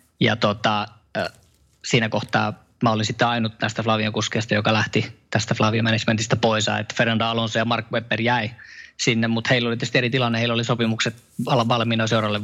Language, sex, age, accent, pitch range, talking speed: Finnish, male, 20-39, native, 110-115 Hz, 180 wpm